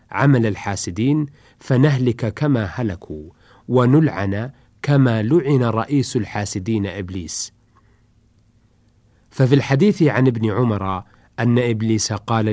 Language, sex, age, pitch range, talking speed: Arabic, male, 40-59, 105-135 Hz, 90 wpm